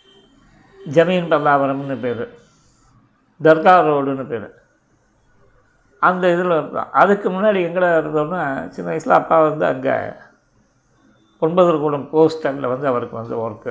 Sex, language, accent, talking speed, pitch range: male, Tamil, native, 105 wpm, 145-170 Hz